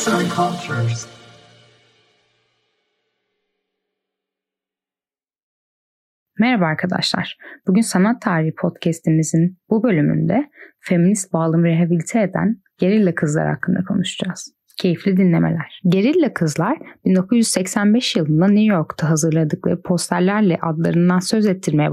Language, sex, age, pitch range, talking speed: Turkish, female, 10-29, 165-210 Hz, 80 wpm